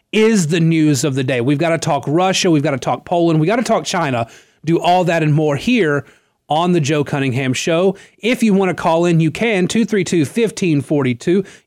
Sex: male